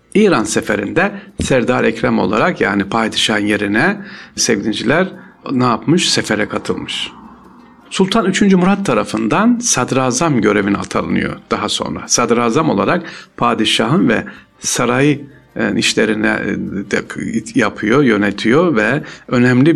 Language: Turkish